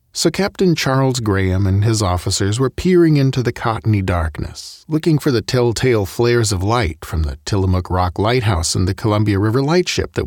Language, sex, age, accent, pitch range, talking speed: English, male, 40-59, American, 90-125 Hz, 180 wpm